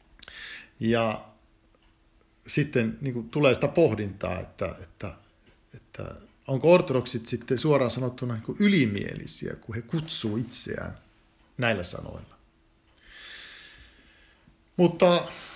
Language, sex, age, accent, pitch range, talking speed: Finnish, male, 50-69, native, 115-155 Hz, 95 wpm